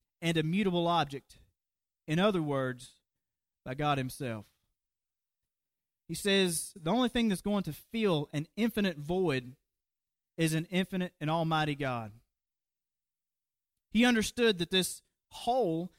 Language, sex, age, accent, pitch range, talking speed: English, male, 30-49, American, 150-200 Hz, 125 wpm